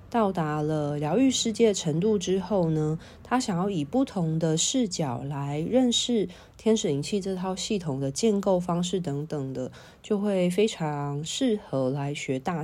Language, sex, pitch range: Chinese, female, 145-215 Hz